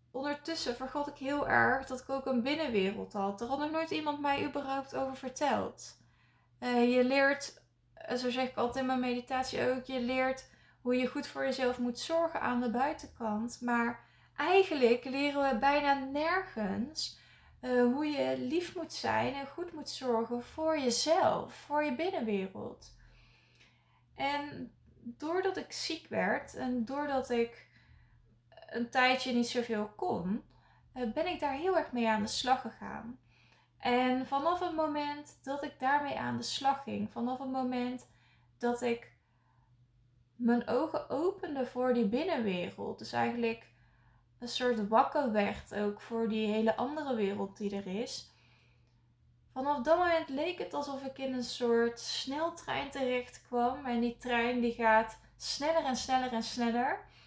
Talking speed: 150 wpm